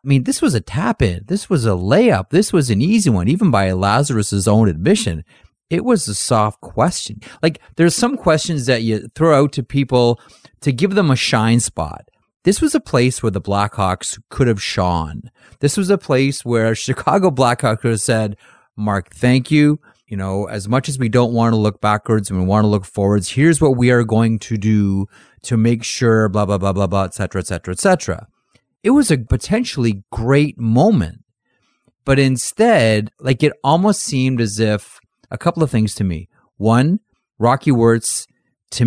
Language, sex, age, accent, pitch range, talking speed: English, male, 30-49, American, 105-140 Hz, 195 wpm